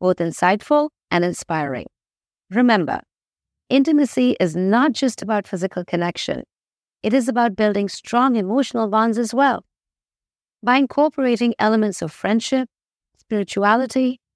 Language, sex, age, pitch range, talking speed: English, female, 50-69, 185-250 Hz, 115 wpm